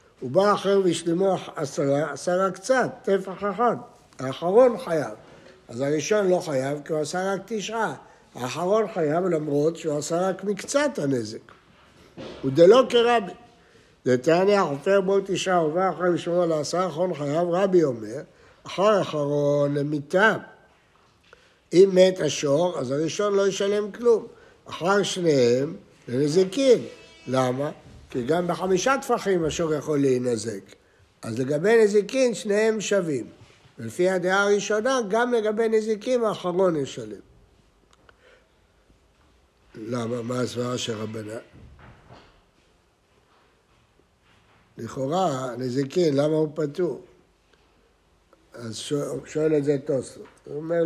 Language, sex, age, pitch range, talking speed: Hebrew, male, 60-79, 140-195 Hz, 110 wpm